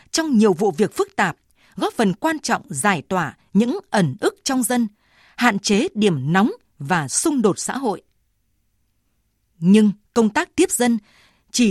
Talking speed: 165 wpm